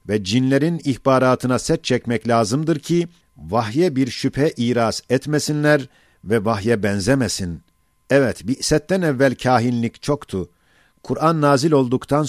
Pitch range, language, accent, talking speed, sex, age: 115-145 Hz, Turkish, native, 115 wpm, male, 50-69